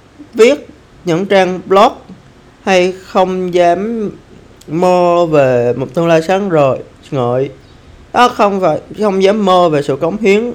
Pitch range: 135-180 Hz